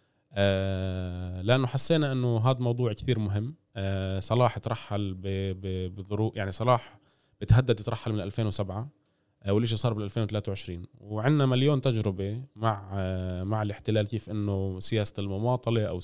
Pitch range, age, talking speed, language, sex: 95-115 Hz, 20-39, 130 wpm, Arabic, male